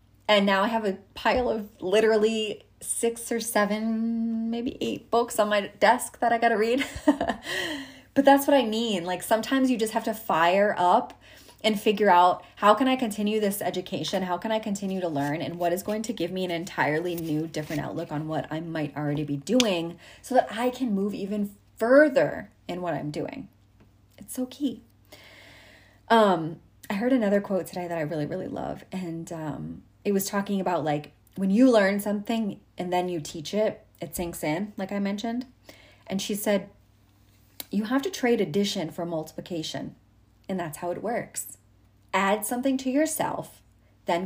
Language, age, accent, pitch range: English, 20-39, American, 160-220 Hz